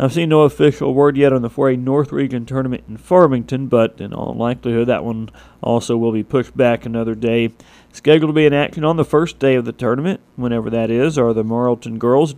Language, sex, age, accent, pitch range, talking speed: English, male, 40-59, American, 115-130 Hz, 230 wpm